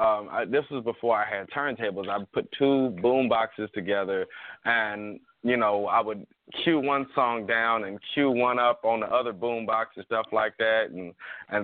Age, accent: 20-39, American